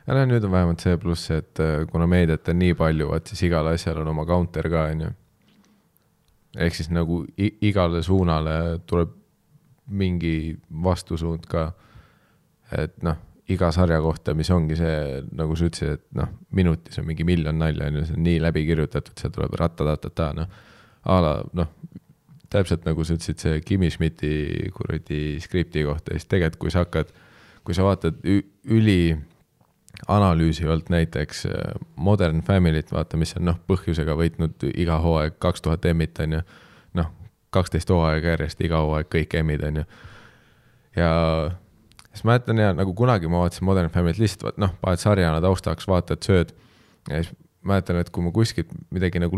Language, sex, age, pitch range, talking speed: English, male, 20-39, 80-95 Hz, 150 wpm